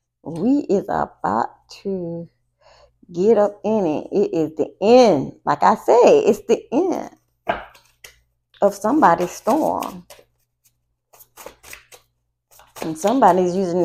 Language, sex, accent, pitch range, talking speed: English, female, American, 135-205 Hz, 105 wpm